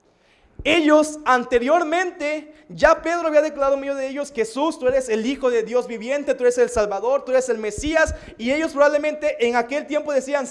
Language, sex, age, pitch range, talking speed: Spanish, male, 30-49, 235-295 Hz, 190 wpm